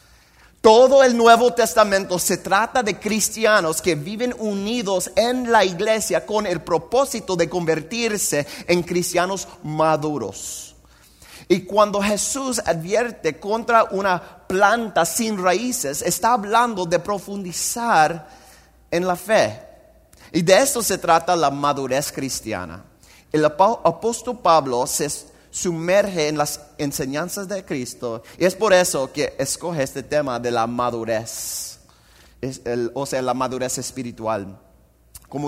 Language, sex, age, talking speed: Spanish, male, 30-49, 125 wpm